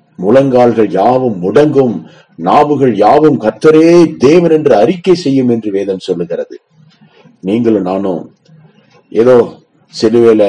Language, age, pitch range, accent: Tamil, 30-49, 105-155 Hz, native